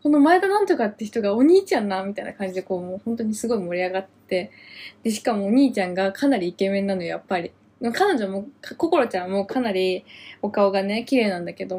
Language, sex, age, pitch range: Japanese, female, 20-39, 190-260 Hz